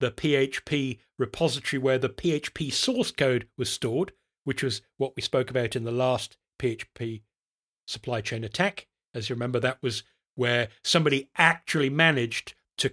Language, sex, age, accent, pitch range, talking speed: English, male, 40-59, British, 125-150 Hz, 155 wpm